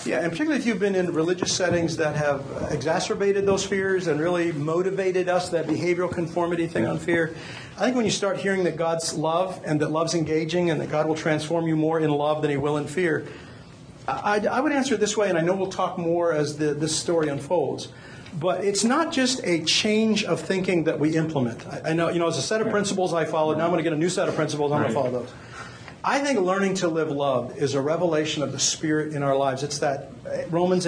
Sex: male